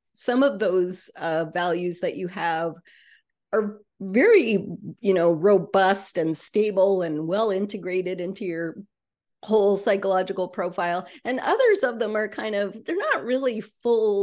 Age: 30-49